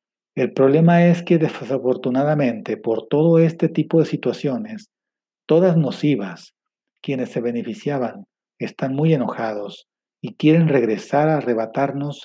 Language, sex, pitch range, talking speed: Spanish, male, 120-150 Hz, 120 wpm